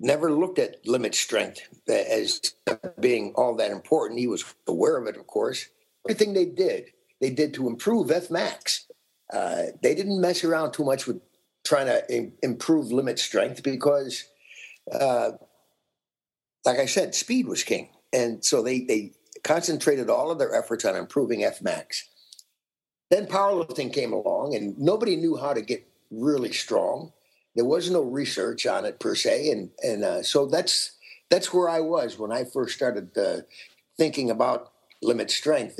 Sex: male